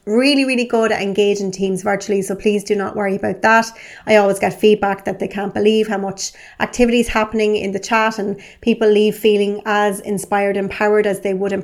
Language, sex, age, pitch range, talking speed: English, female, 30-49, 200-225 Hz, 210 wpm